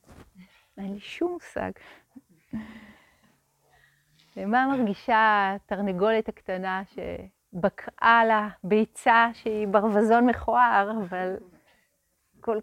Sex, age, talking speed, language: female, 30-49, 75 wpm, Hebrew